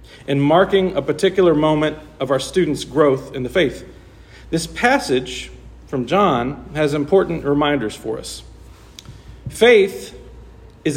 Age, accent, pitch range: 40-59, American, 140-185 Hz